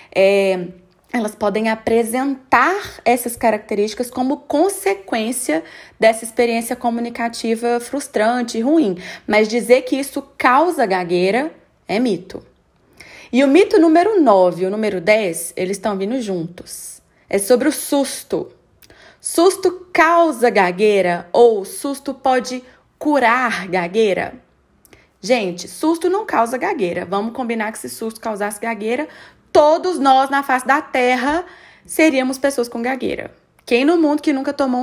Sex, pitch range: female, 205-285 Hz